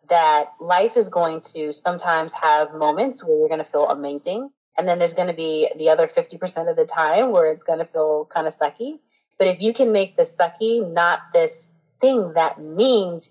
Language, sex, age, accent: English, female, 30-49, American